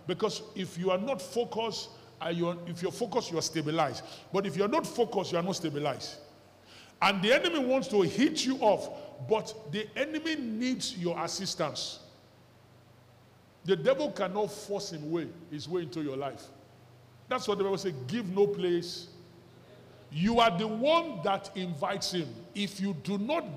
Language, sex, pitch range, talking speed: English, male, 150-205 Hz, 170 wpm